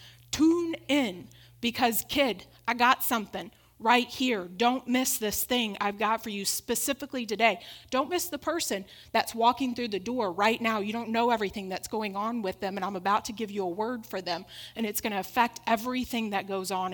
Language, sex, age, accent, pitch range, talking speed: English, female, 30-49, American, 180-225 Hz, 205 wpm